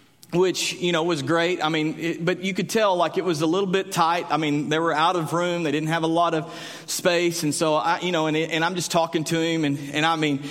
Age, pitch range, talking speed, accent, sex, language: 40-59, 170-215 Hz, 285 wpm, American, male, English